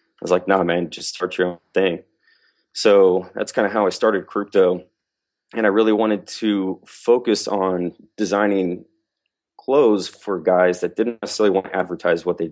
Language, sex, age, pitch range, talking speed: English, male, 30-49, 85-100 Hz, 175 wpm